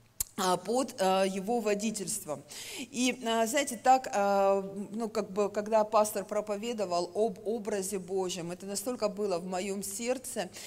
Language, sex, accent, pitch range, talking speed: Russian, female, native, 190-250 Hz, 120 wpm